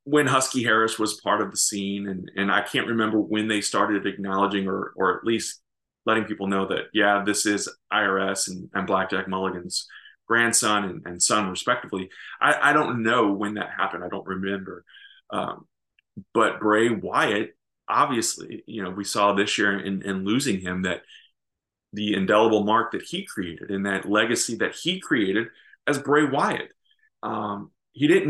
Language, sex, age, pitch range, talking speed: English, male, 30-49, 100-130 Hz, 175 wpm